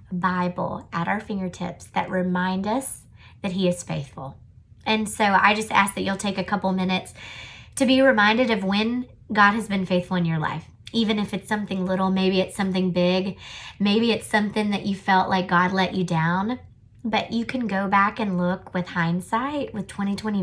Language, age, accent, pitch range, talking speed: English, 20-39, American, 175-205 Hz, 190 wpm